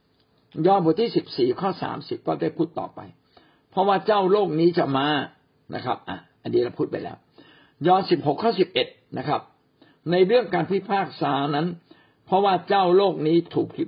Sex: male